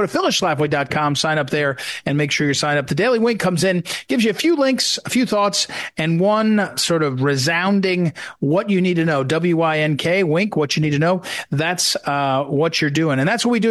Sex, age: male, 40-59